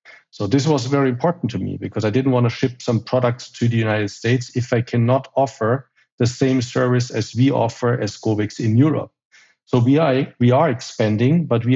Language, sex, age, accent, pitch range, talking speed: English, male, 50-69, German, 115-140 Hz, 210 wpm